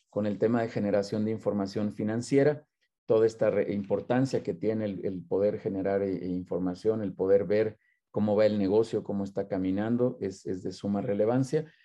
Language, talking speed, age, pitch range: Spanish, 180 wpm, 40-59, 95-120 Hz